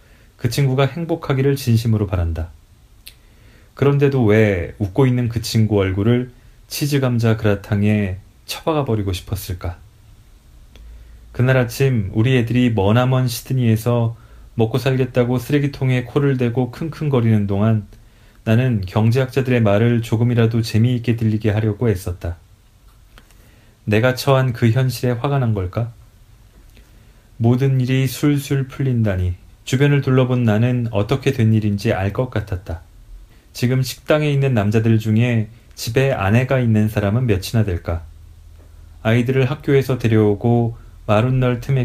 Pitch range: 100-125 Hz